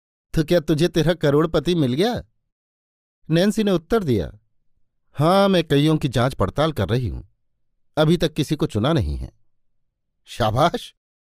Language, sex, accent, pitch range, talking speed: Hindi, male, native, 120-165 Hz, 145 wpm